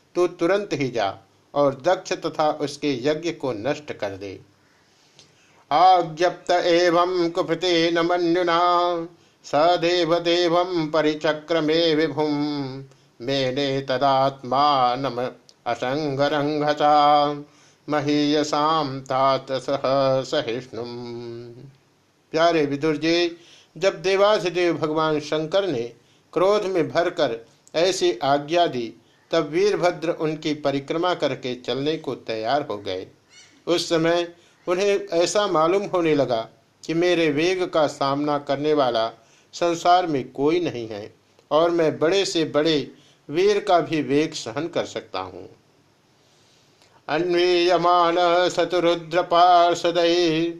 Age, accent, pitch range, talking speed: 50-69, native, 140-170 Hz, 100 wpm